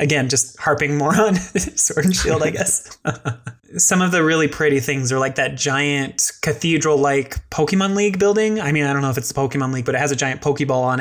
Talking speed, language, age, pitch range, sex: 225 wpm, English, 20-39, 130-150 Hz, male